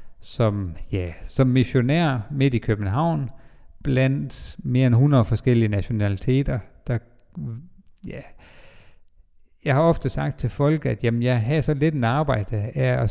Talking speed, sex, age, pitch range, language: 140 wpm, male, 50-69, 110-145 Hz, Danish